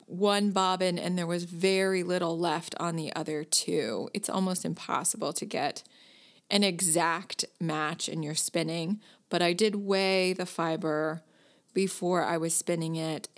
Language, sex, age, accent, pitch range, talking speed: English, female, 30-49, American, 165-205 Hz, 155 wpm